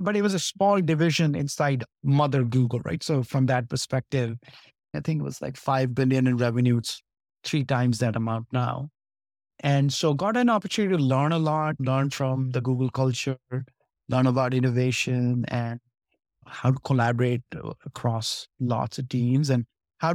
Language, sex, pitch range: English, male, 125-150 Hz